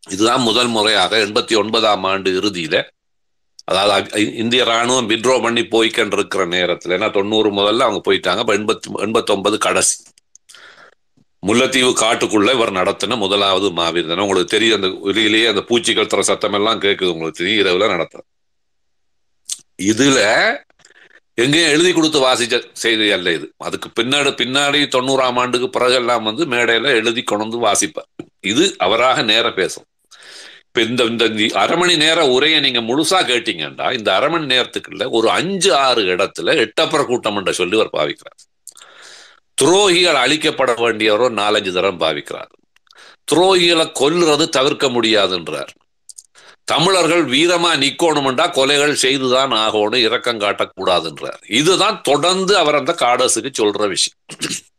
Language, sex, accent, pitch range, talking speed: Tamil, male, native, 105-145 Hz, 110 wpm